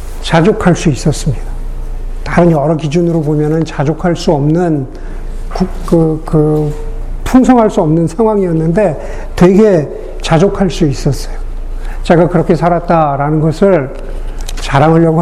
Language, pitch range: Korean, 155-200 Hz